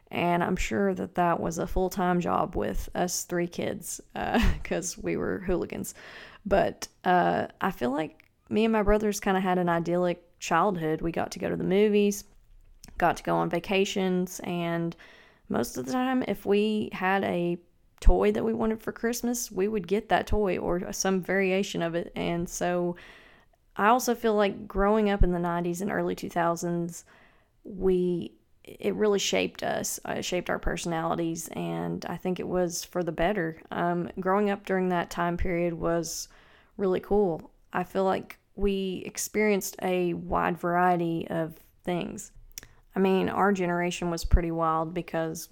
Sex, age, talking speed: female, 30-49, 170 wpm